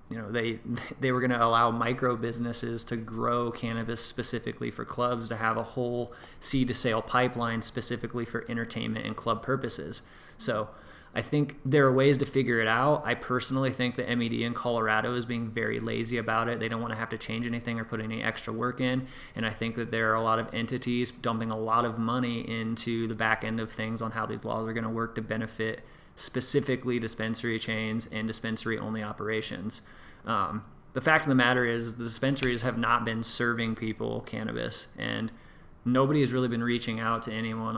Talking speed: 205 wpm